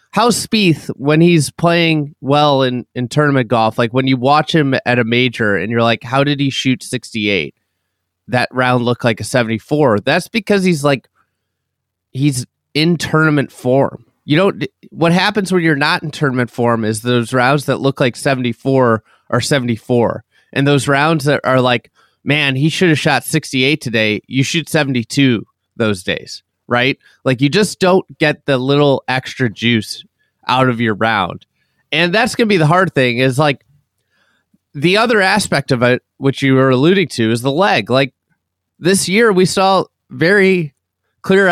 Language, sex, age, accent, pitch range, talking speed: English, male, 30-49, American, 125-155 Hz, 175 wpm